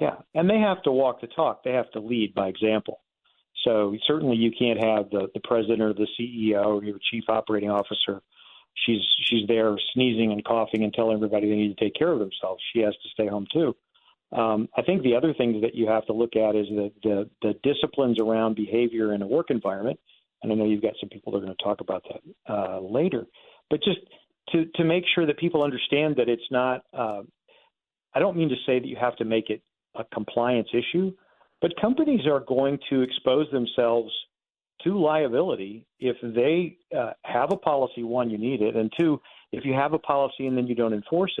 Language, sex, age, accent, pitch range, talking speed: English, male, 50-69, American, 110-135 Hz, 215 wpm